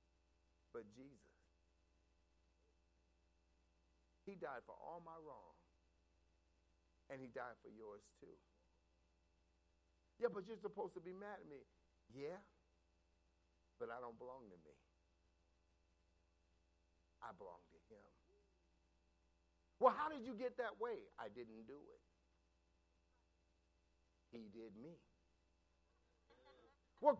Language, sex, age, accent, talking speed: English, male, 50-69, American, 110 wpm